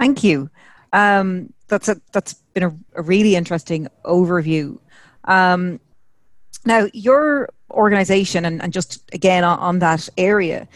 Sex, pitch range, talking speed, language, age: female, 160-190 Hz, 135 wpm, English, 30-49